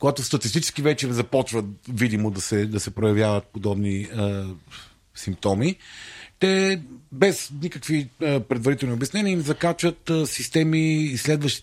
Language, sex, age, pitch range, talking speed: Bulgarian, male, 40-59, 110-155 Hz, 130 wpm